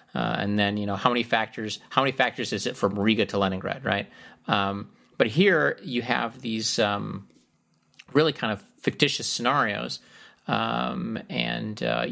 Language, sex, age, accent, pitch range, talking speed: English, male, 30-49, American, 105-130 Hz, 165 wpm